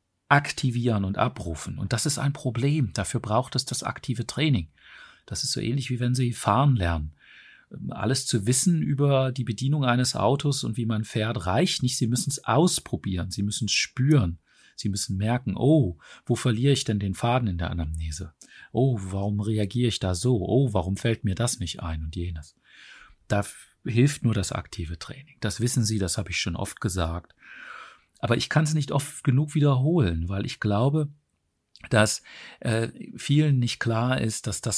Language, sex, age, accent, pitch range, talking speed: German, male, 40-59, German, 100-135 Hz, 185 wpm